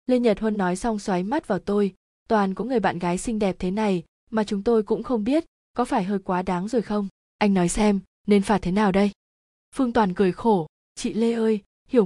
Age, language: 20-39, Vietnamese